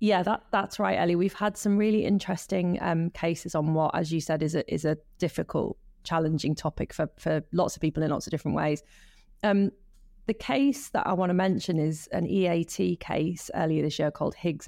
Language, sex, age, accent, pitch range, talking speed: English, female, 30-49, British, 155-185 Hz, 200 wpm